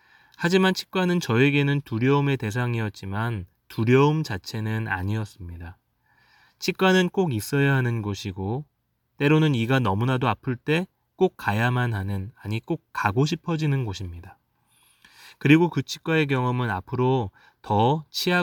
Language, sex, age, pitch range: Korean, male, 20-39, 110-145 Hz